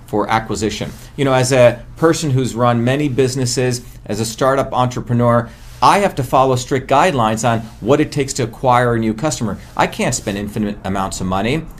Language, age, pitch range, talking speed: English, 40-59, 115-140 Hz, 190 wpm